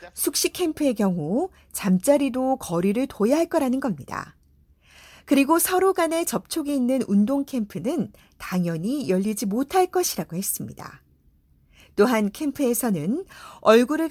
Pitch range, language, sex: 190-310 Hz, Korean, female